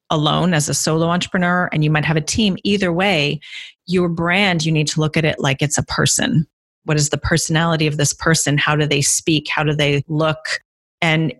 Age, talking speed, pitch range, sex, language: 40-59, 215 wpm, 145-170 Hz, female, English